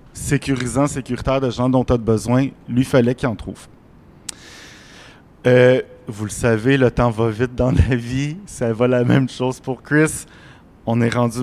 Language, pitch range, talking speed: French, 125-150 Hz, 180 wpm